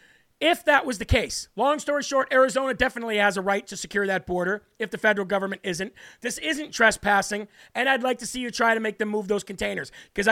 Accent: American